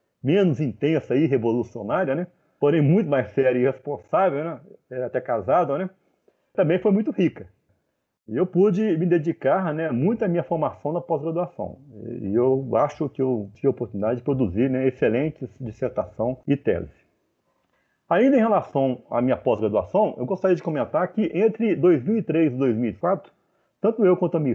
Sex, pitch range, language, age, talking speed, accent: male, 130-185 Hz, Portuguese, 40-59, 165 wpm, Brazilian